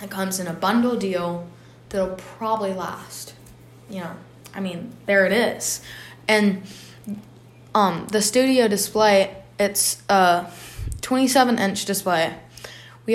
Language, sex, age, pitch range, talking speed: English, female, 20-39, 180-225 Hz, 125 wpm